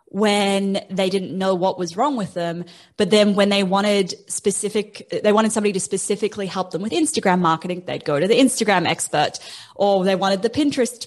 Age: 10-29